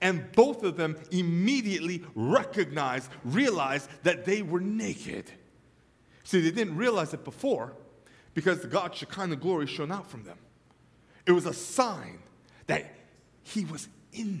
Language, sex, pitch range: English, male, 115-180 Hz